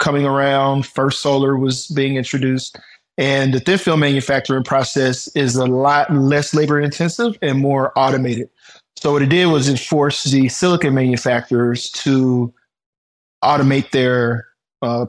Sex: male